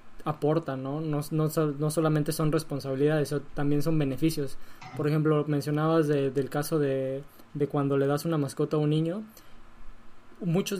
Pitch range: 140-160 Hz